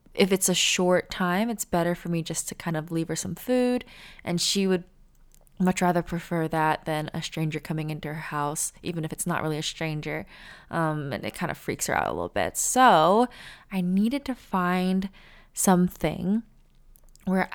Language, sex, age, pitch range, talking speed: English, female, 20-39, 165-195 Hz, 190 wpm